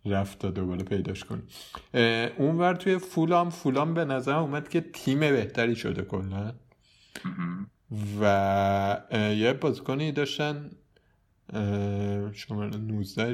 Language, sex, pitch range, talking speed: Persian, male, 100-130 Hz, 100 wpm